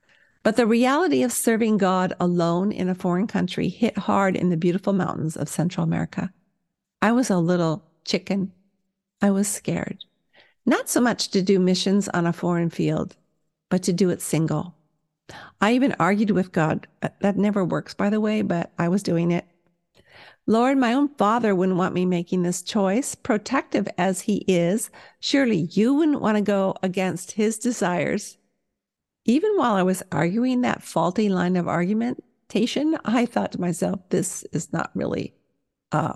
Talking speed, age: 170 wpm, 50-69